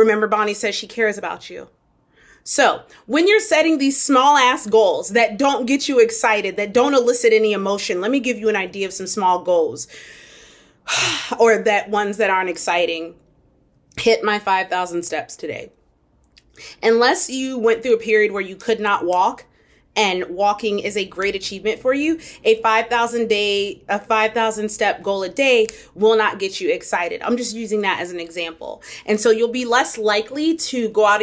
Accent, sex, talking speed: American, female, 185 wpm